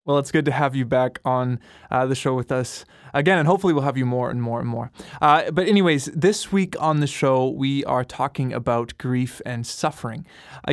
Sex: male